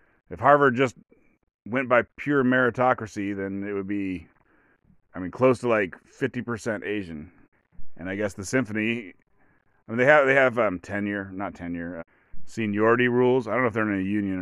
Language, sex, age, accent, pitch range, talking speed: English, male, 30-49, American, 95-120 Hz, 185 wpm